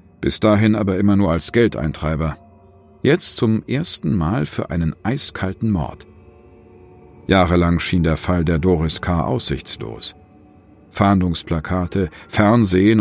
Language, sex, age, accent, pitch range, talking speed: German, male, 50-69, German, 85-105 Hz, 115 wpm